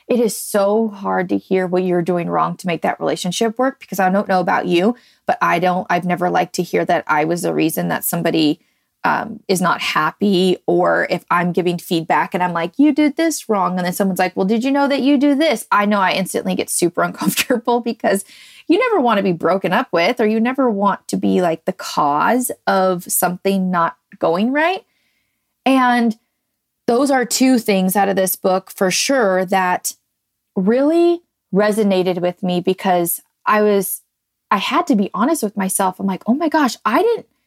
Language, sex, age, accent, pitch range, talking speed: English, female, 20-39, American, 185-250 Hz, 205 wpm